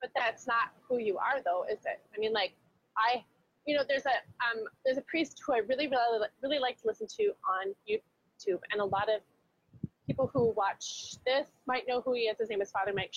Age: 20-39